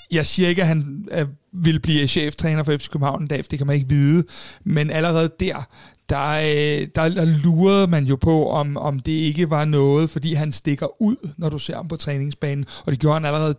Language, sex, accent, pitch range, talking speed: Danish, male, native, 145-170 Hz, 210 wpm